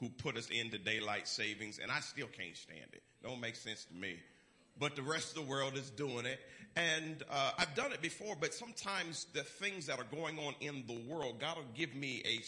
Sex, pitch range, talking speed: male, 120-150 Hz, 235 wpm